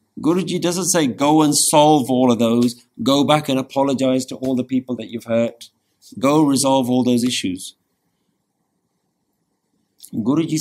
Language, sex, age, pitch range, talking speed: English, male, 50-69, 105-160 Hz, 145 wpm